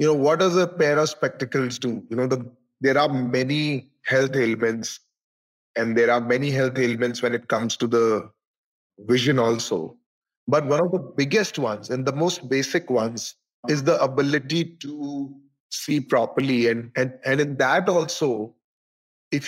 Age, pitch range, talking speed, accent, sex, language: 30-49, 125-160 Hz, 165 wpm, Indian, male, English